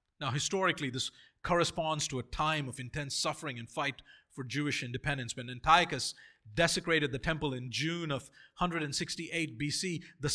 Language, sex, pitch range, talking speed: English, male, 135-170 Hz, 150 wpm